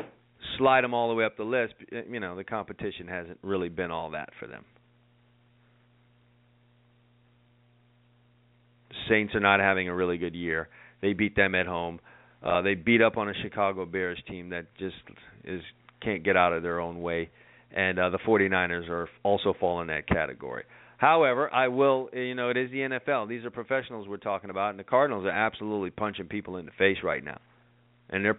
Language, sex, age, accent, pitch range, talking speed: English, male, 40-59, American, 100-120 Hz, 190 wpm